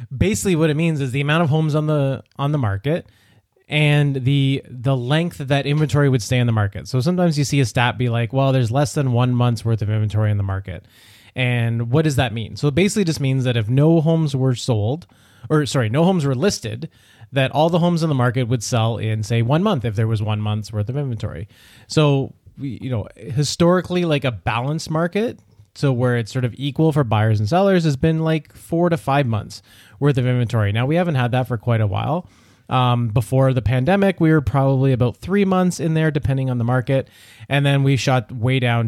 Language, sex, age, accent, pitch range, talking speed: English, male, 20-39, American, 115-150 Hz, 230 wpm